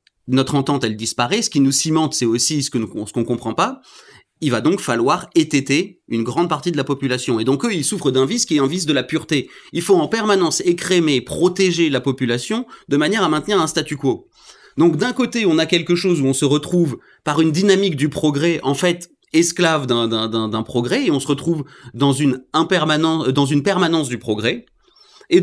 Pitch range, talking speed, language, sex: 135-185 Hz, 210 wpm, French, male